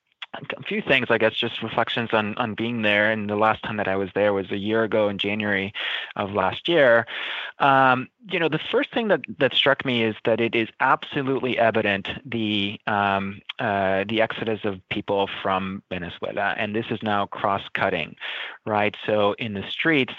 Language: English